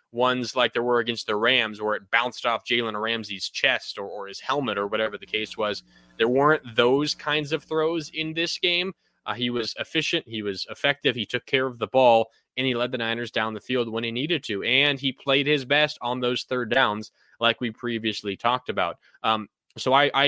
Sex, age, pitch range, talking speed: male, 20-39, 115-140 Hz, 220 wpm